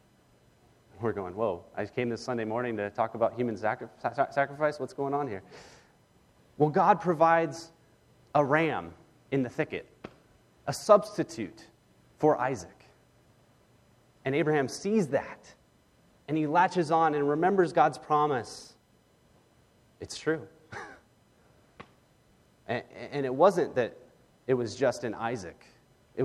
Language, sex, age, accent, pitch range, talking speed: English, male, 30-49, American, 115-155 Hz, 125 wpm